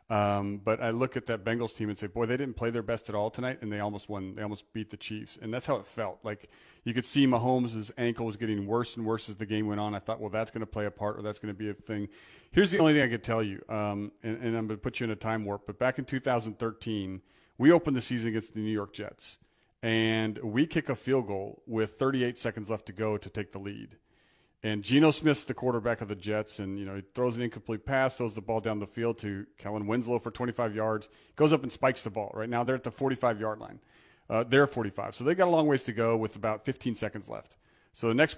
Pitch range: 105-125 Hz